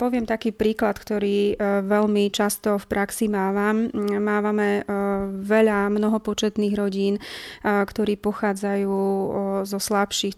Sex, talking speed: female, 105 wpm